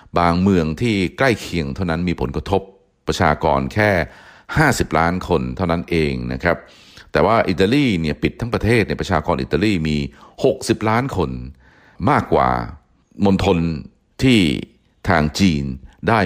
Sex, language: male, Thai